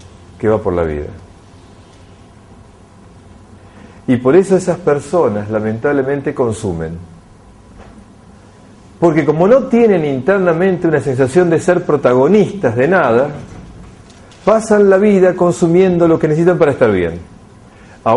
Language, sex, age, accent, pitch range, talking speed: Spanish, male, 50-69, Argentinian, 100-165 Hz, 115 wpm